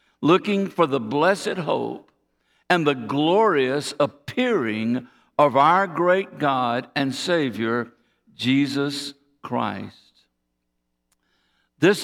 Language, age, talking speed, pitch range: English, 60-79, 90 wpm, 130-165 Hz